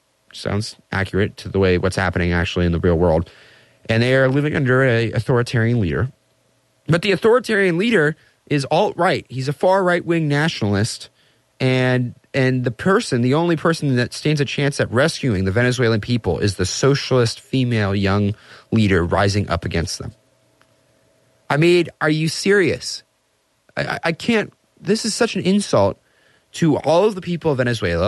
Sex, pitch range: male, 110-150 Hz